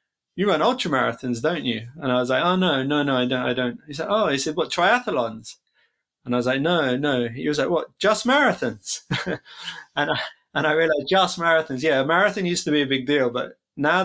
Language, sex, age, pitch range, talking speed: Slovak, male, 20-39, 125-160 Hz, 235 wpm